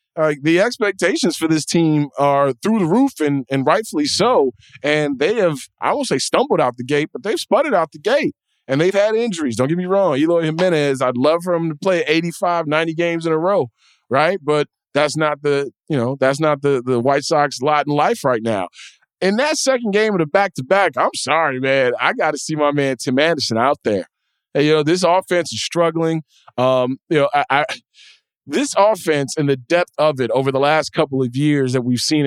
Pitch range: 135-170 Hz